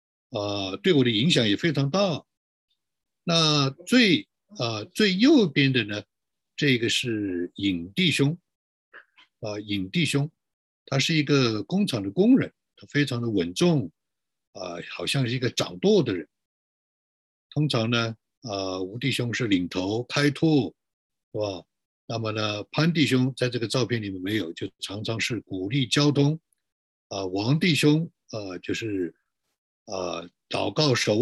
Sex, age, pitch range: male, 60-79, 95-145 Hz